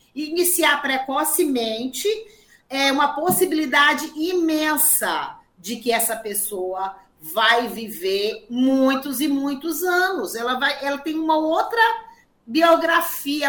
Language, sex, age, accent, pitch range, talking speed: Portuguese, female, 40-59, Brazilian, 235-340 Hz, 100 wpm